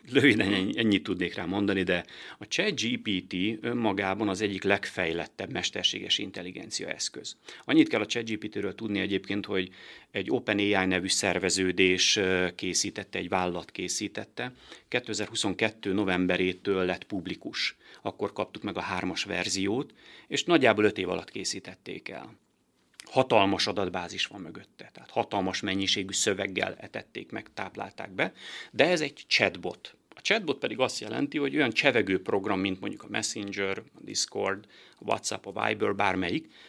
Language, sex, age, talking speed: Hungarian, male, 30-49, 140 wpm